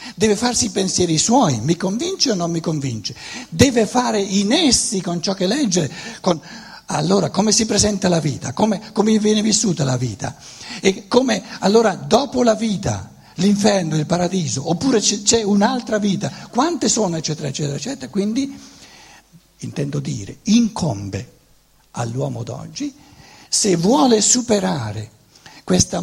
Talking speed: 140 wpm